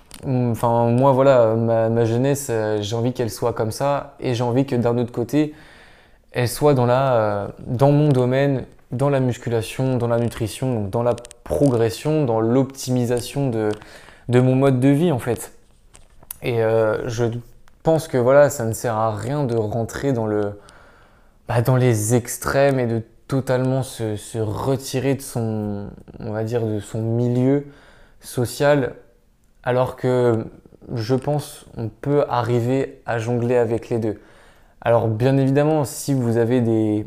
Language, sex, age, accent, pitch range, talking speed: French, male, 20-39, French, 115-135 Hz, 165 wpm